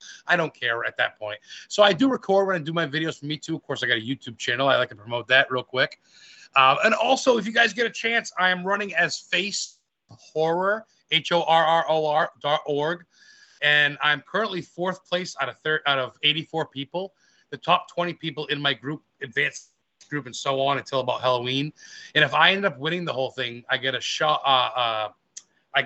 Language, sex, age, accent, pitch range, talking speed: English, male, 30-49, American, 130-175 Hz, 225 wpm